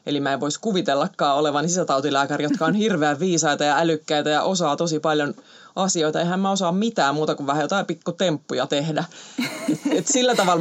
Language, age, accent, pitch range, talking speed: Finnish, 30-49, native, 145-180 Hz, 175 wpm